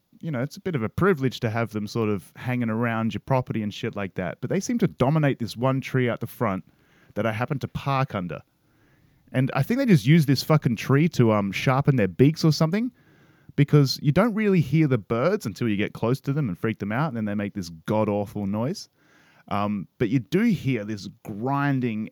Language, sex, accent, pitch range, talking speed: English, male, Australian, 110-150 Hz, 235 wpm